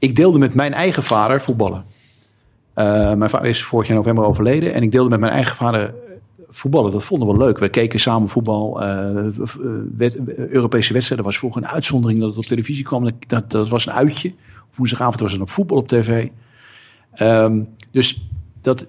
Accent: Dutch